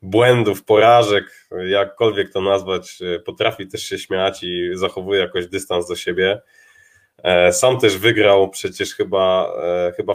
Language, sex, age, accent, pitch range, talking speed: Polish, male, 20-39, native, 95-135 Hz, 125 wpm